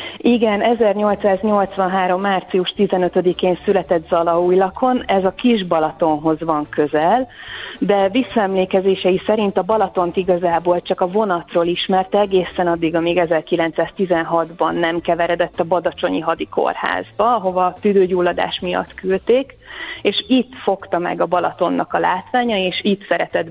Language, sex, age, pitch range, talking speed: Hungarian, female, 30-49, 175-200 Hz, 125 wpm